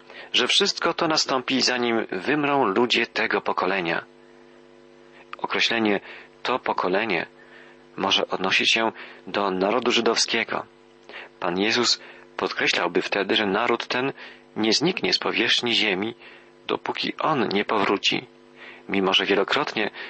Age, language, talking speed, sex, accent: 40-59, Polish, 110 wpm, male, native